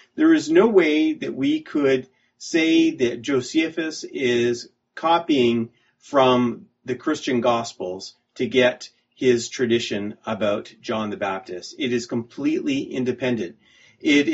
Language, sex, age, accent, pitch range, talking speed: English, male, 40-59, American, 110-135 Hz, 120 wpm